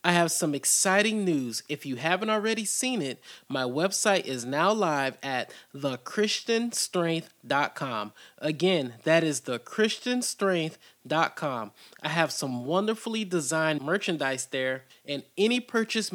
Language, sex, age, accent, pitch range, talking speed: English, male, 30-49, American, 140-210 Hz, 120 wpm